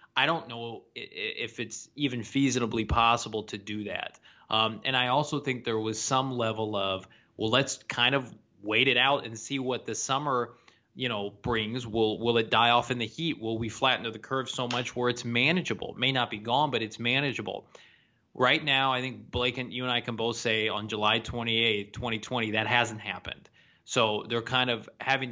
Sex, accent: male, American